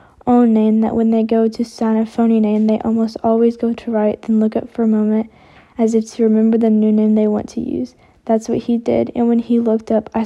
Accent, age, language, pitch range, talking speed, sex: American, 10-29, English, 220-235 Hz, 255 wpm, female